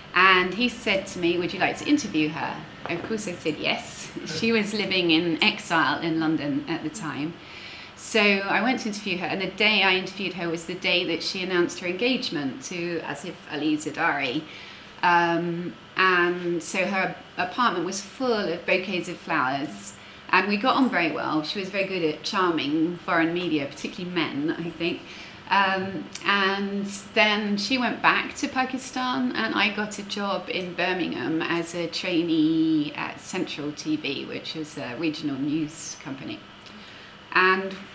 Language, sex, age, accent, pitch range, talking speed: English, female, 30-49, British, 165-205 Hz, 170 wpm